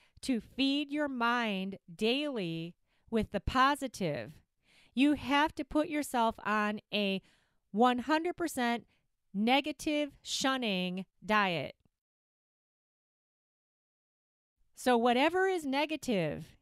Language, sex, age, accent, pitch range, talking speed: English, female, 30-49, American, 210-265 Hz, 85 wpm